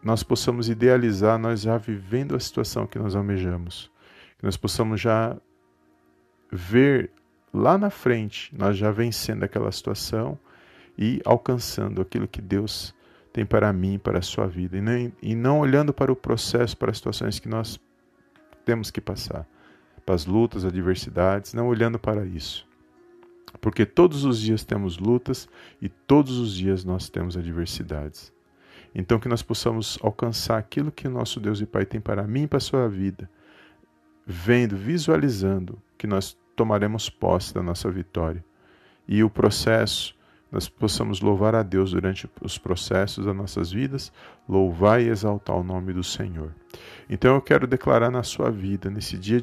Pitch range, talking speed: 95-115 Hz, 160 wpm